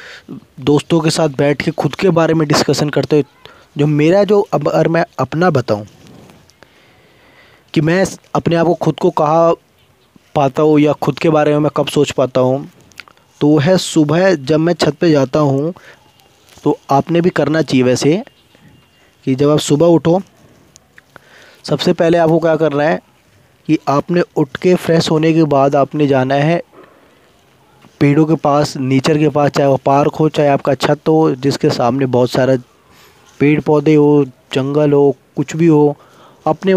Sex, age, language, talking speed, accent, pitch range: male, 20-39, Hindi, 165 wpm, native, 135-160 Hz